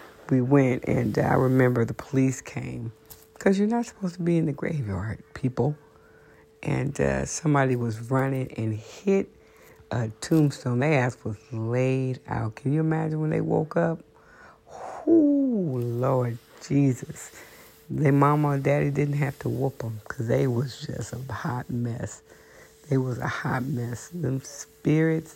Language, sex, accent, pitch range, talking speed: English, female, American, 120-150 Hz, 155 wpm